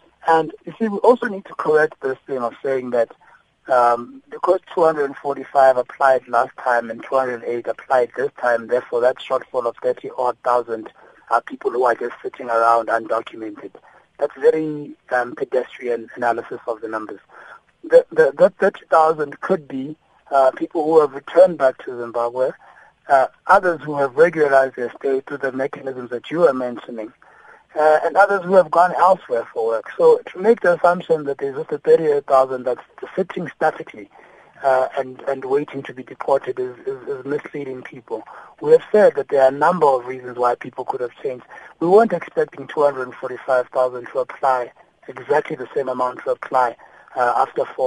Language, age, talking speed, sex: English, 60-79, 175 wpm, male